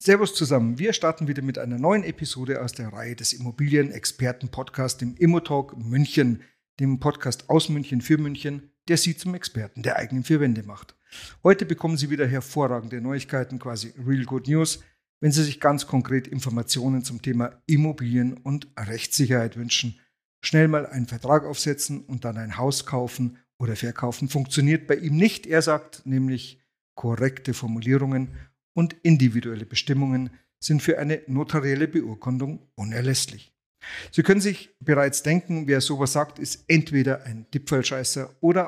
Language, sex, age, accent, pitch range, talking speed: German, male, 50-69, German, 125-150 Hz, 150 wpm